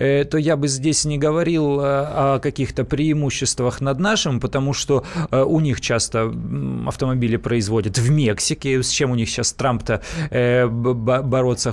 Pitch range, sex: 130-165 Hz, male